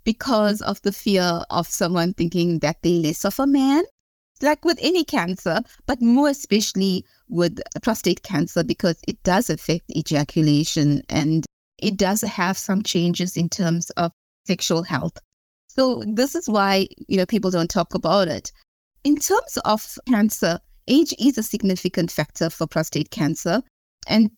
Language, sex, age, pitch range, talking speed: English, female, 30-49, 175-235 Hz, 160 wpm